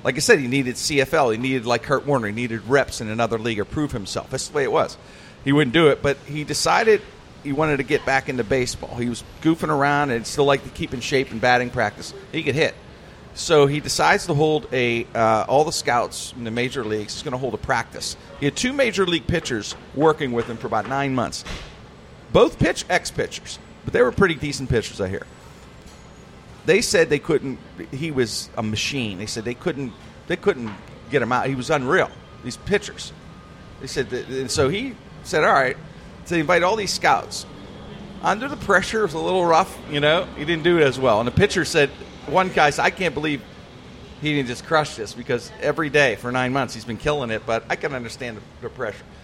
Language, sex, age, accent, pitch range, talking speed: English, male, 40-59, American, 120-155 Hz, 225 wpm